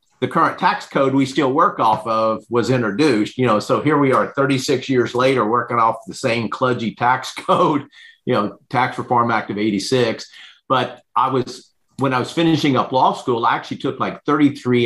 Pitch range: 105-130 Hz